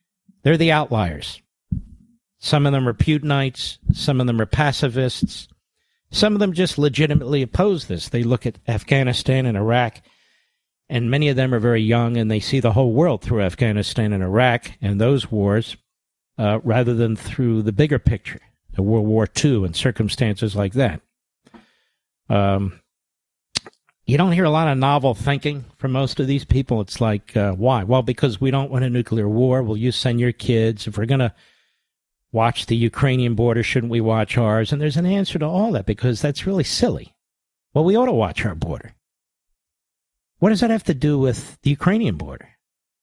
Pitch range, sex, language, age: 110-150 Hz, male, English, 50-69